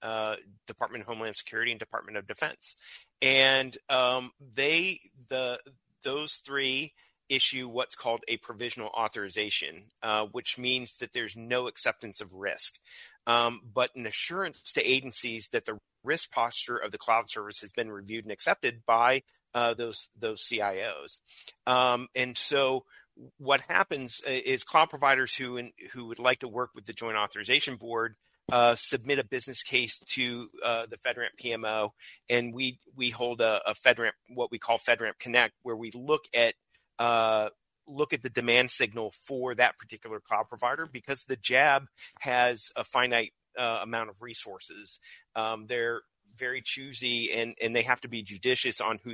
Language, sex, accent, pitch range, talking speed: English, male, American, 115-130 Hz, 160 wpm